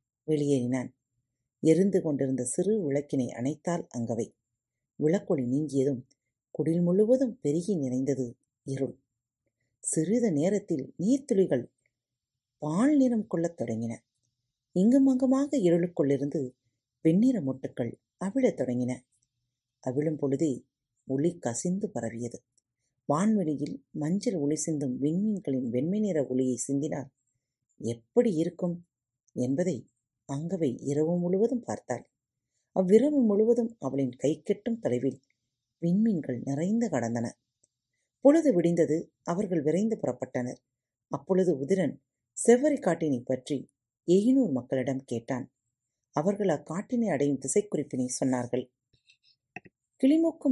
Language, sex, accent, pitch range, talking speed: Tamil, female, native, 125-180 Hz, 85 wpm